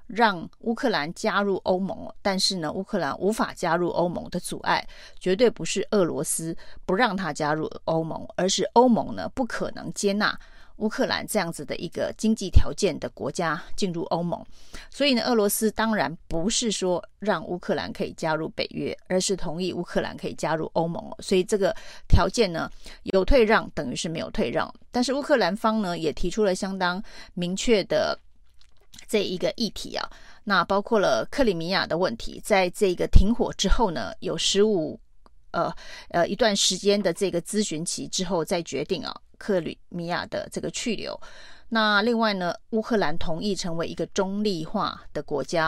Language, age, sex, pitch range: Chinese, 30-49, female, 180-220 Hz